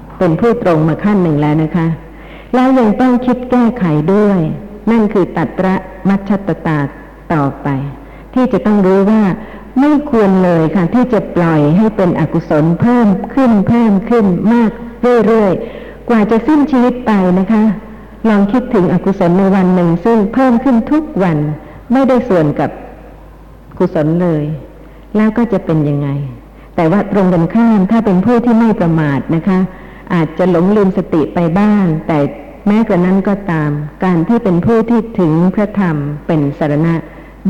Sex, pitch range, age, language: female, 160-215 Hz, 60-79, Thai